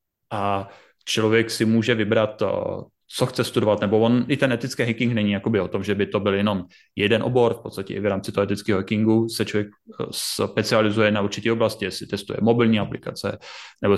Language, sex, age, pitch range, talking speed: Czech, male, 30-49, 100-115 Hz, 185 wpm